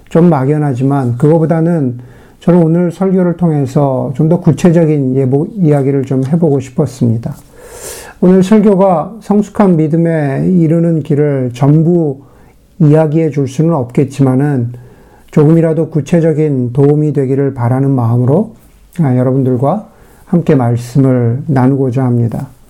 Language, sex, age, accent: Korean, male, 50-69, native